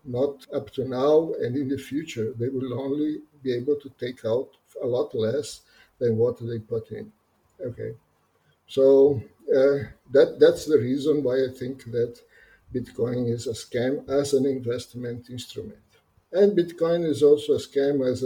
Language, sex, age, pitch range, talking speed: English, male, 50-69, 120-150 Hz, 165 wpm